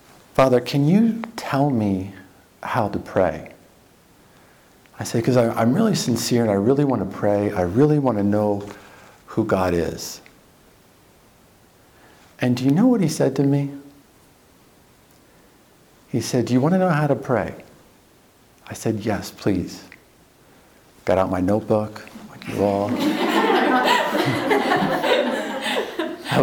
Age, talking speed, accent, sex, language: 50-69, 135 wpm, American, male, English